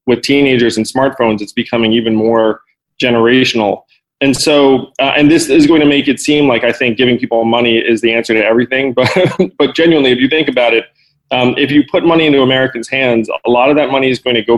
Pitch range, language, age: 115-145 Hz, English, 20-39